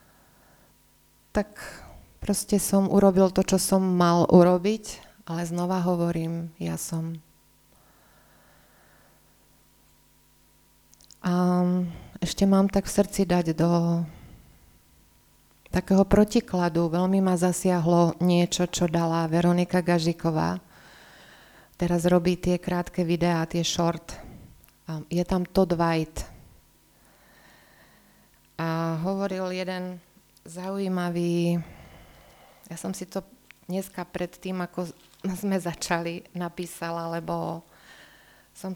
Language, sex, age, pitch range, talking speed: Slovak, female, 30-49, 170-190 Hz, 95 wpm